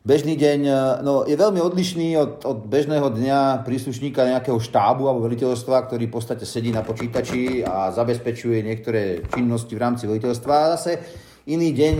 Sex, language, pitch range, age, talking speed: male, Slovak, 105-130 Hz, 40-59, 160 wpm